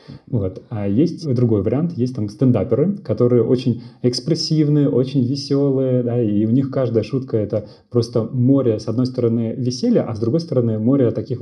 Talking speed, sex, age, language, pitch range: 175 wpm, male, 30-49, Russian, 110-130 Hz